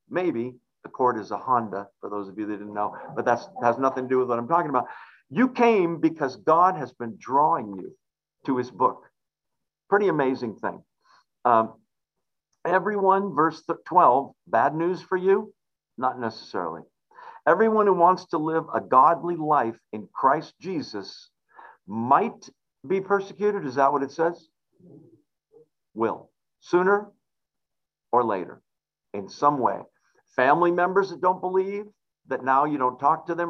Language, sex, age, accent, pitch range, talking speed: English, male, 50-69, American, 125-190 Hz, 155 wpm